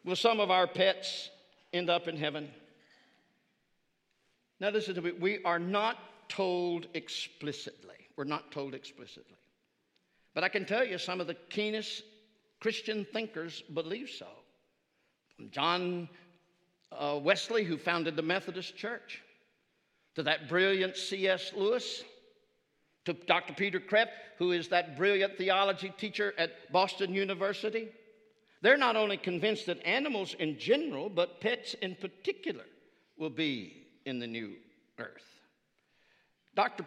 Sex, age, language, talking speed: male, 60-79, English, 130 wpm